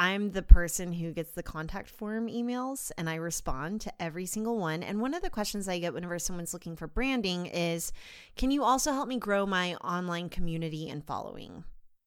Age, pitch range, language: 30-49, 170-230 Hz, English